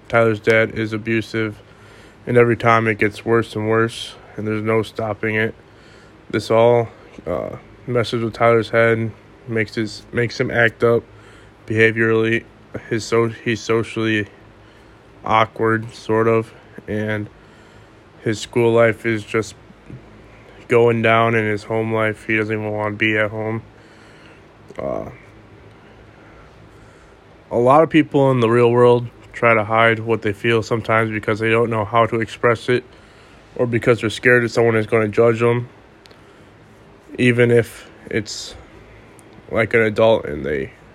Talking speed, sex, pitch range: 145 wpm, male, 110-115 Hz